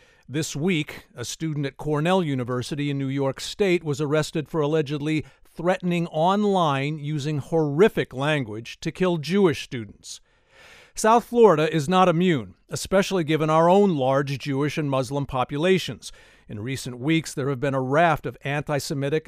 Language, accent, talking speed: English, American, 150 wpm